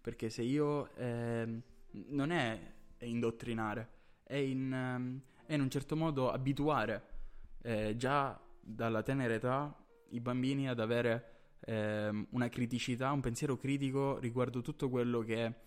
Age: 10-29